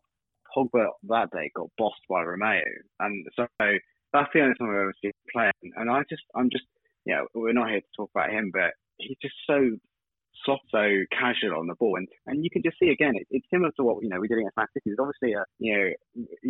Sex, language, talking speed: male, English, 240 wpm